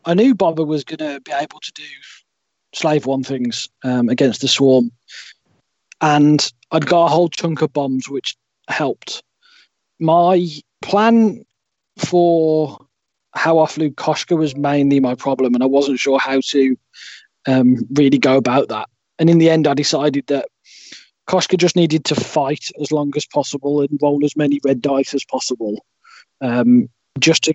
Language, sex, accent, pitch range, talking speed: English, male, British, 140-160 Hz, 165 wpm